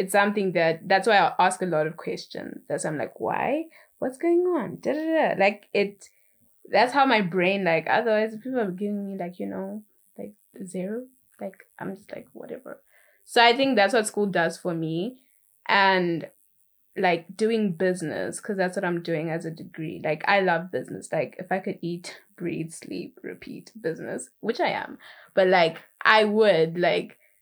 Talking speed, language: 190 wpm, English